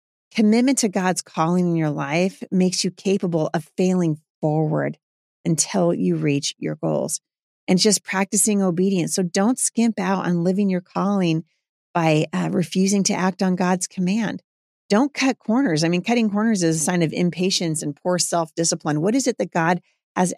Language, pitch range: English, 165-200 Hz